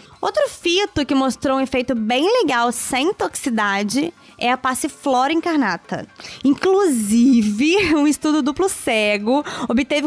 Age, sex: 20-39, female